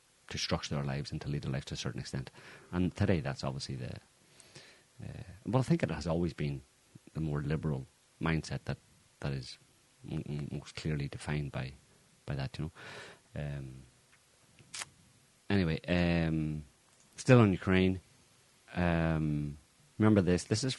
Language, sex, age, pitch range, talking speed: English, male, 30-49, 80-95 Hz, 155 wpm